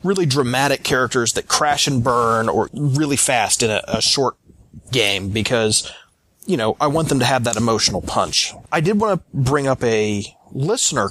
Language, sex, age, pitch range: English, male, 30-49, 110-155 Hz